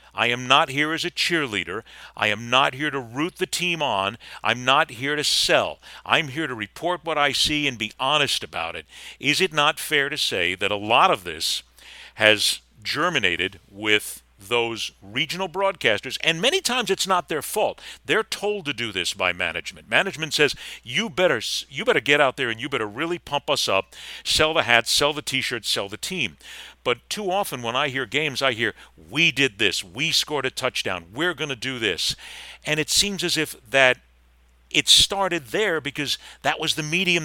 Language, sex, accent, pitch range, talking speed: English, male, American, 120-170 Hz, 200 wpm